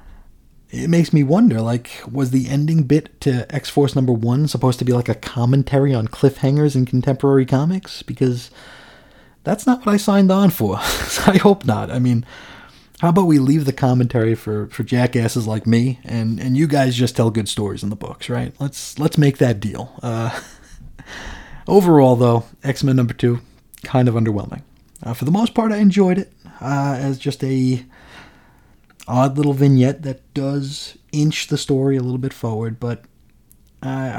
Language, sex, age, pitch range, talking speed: English, male, 30-49, 120-145 Hz, 180 wpm